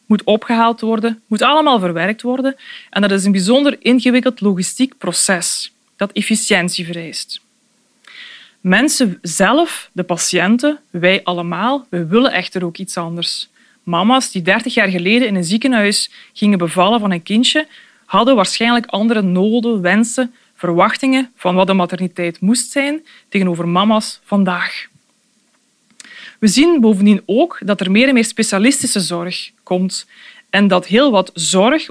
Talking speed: 140 wpm